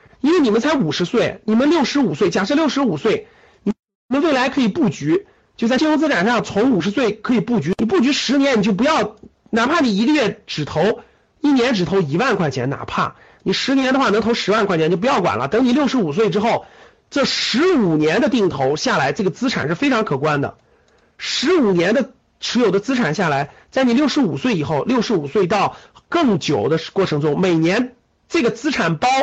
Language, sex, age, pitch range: Chinese, male, 50-69, 195-275 Hz